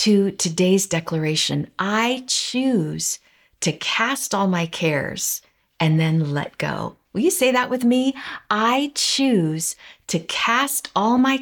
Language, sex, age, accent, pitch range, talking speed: English, female, 50-69, American, 170-245 Hz, 135 wpm